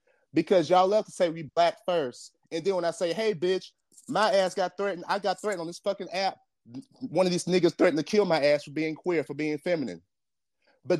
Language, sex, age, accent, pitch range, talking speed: English, male, 30-49, American, 160-190 Hz, 230 wpm